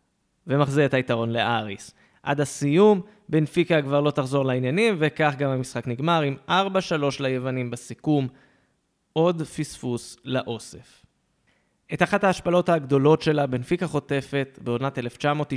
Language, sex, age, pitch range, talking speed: Hebrew, male, 20-39, 125-170 Hz, 115 wpm